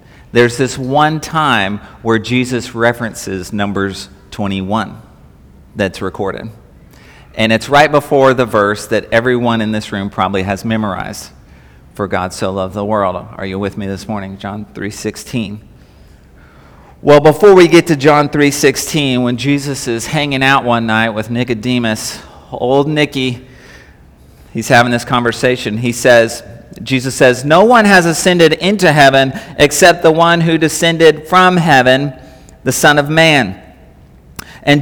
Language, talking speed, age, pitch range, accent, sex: English, 145 wpm, 40-59, 115-170 Hz, American, male